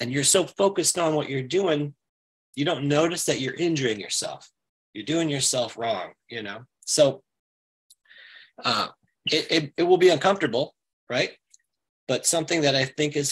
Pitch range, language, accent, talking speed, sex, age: 125-160 Hz, English, American, 160 wpm, male, 30-49